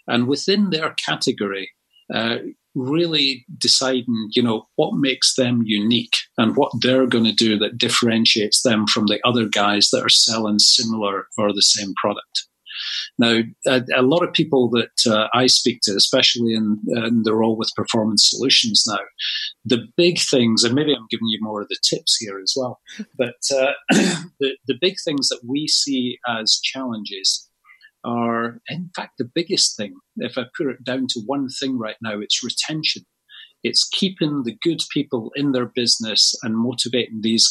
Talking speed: 175 wpm